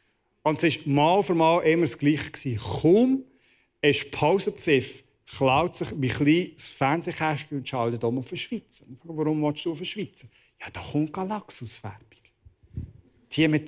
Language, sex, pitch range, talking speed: German, male, 125-160 Hz, 160 wpm